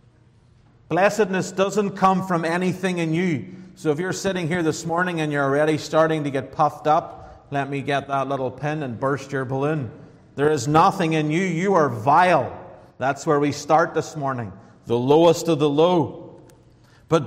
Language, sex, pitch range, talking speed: English, male, 125-180 Hz, 180 wpm